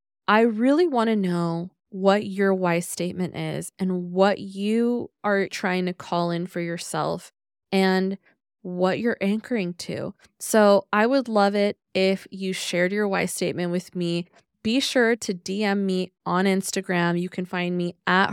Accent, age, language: American, 20-39, English